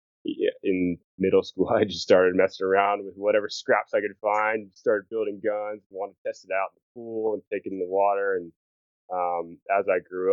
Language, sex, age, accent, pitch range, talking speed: English, male, 20-39, American, 90-115 Hz, 210 wpm